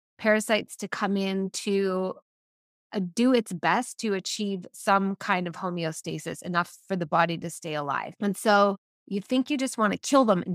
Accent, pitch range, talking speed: American, 185-220 Hz, 180 wpm